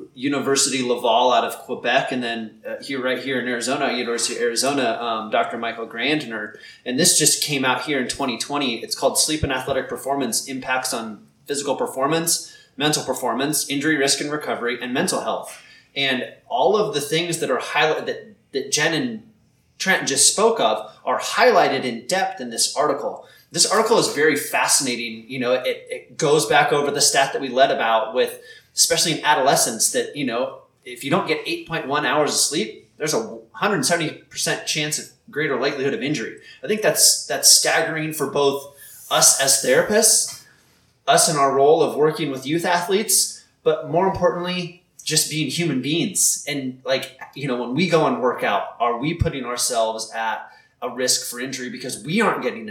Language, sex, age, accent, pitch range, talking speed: English, male, 20-39, American, 130-170 Hz, 185 wpm